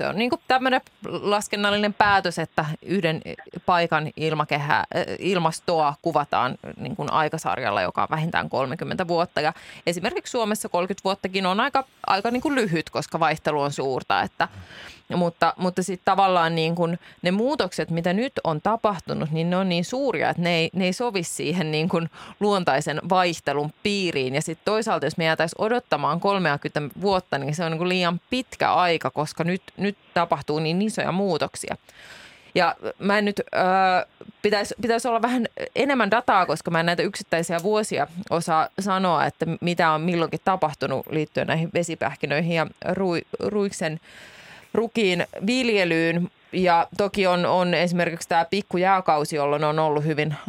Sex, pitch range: female, 160-195 Hz